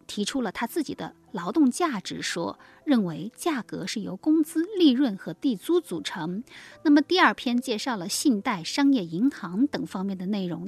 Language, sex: Chinese, female